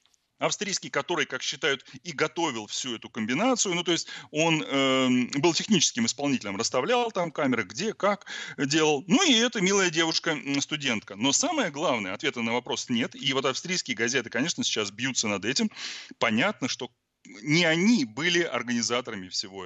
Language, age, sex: Russian, 30-49, male